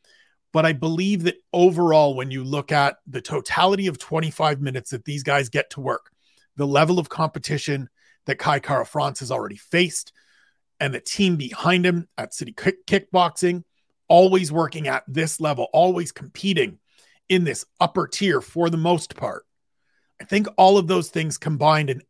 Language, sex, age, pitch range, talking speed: English, male, 40-59, 150-180 Hz, 165 wpm